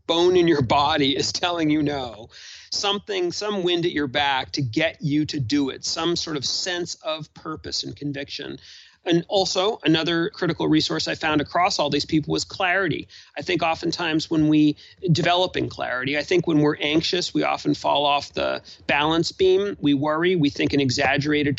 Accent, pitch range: American, 145-175 Hz